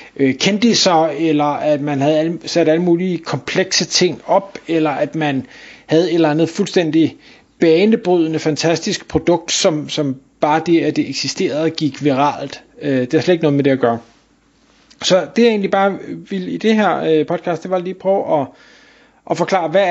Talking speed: 180 wpm